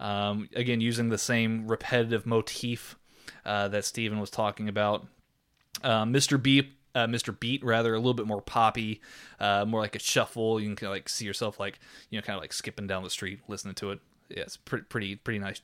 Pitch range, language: 110-135 Hz, English